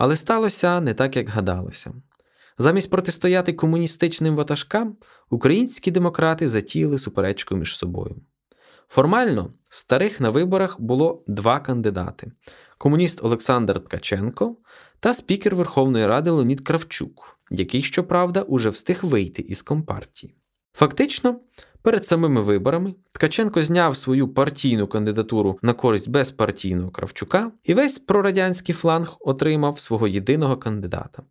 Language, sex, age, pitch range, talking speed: Ukrainian, male, 20-39, 115-170 Hz, 115 wpm